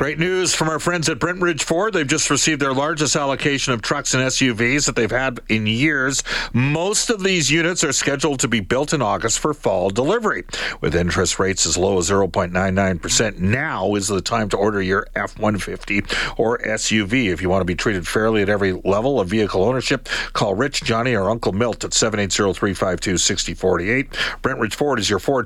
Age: 50-69